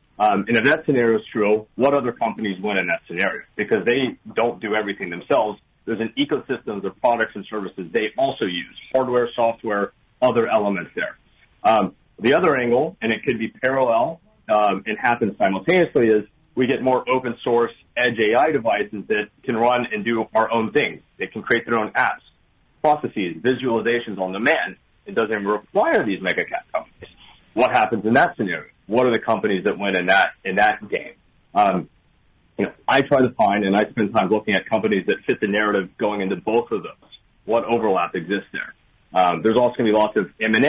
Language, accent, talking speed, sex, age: English, American, 200 wpm, male, 40-59